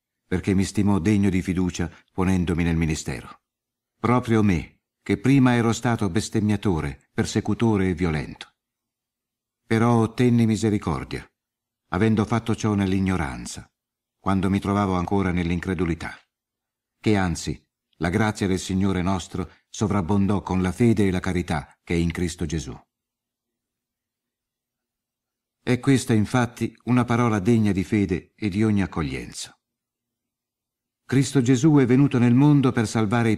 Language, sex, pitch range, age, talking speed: Italian, male, 90-120 Hz, 60-79, 130 wpm